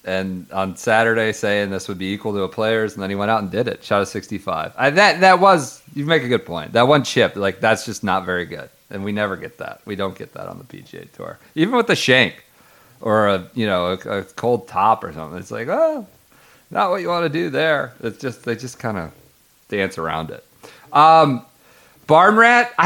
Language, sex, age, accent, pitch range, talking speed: English, male, 40-59, American, 95-145 Hz, 230 wpm